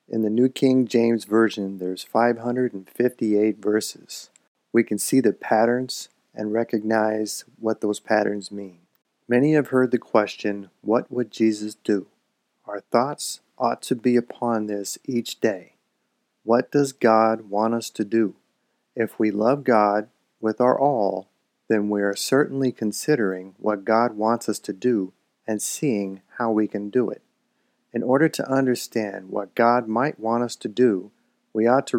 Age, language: 40-59, English